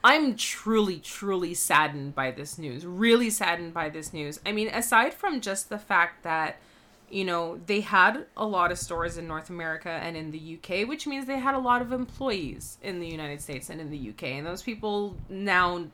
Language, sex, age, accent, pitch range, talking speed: English, female, 20-39, American, 170-220 Hz, 205 wpm